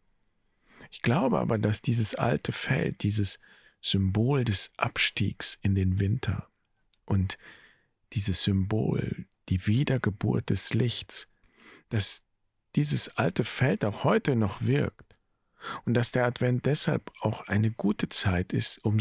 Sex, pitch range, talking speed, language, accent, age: male, 100-120 Hz, 125 wpm, German, German, 50-69